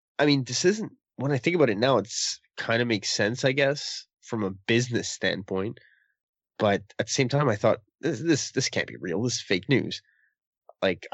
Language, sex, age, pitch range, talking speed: English, male, 20-39, 110-135 Hz, 210 wpm